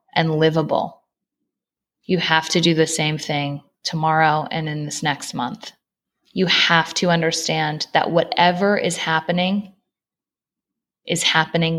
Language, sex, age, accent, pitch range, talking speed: English, female, 20-39, American, 160-190 Hz, 125 wpm